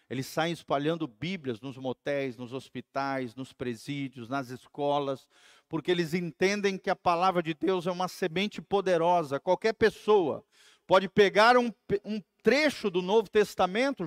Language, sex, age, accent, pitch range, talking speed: Portuguese, male, 40-59, Brazilian, 165-250 Hz, 145 wpm